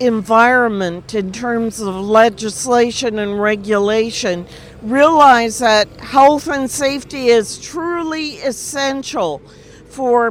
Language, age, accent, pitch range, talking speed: English, 50-69, American, 230-275 Hz, 95 wpm